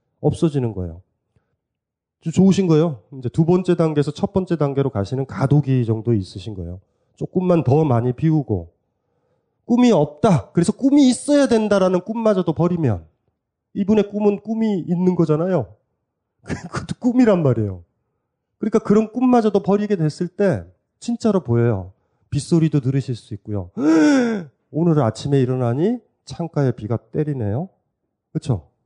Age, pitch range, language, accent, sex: 30-49, 115-170 Hz, Korean, native, male